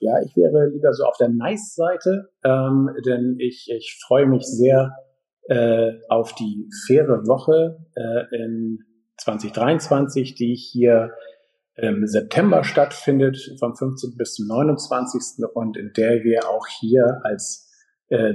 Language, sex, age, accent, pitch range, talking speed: German, male, 50-69, German, 110-135 Hz, 135 wpm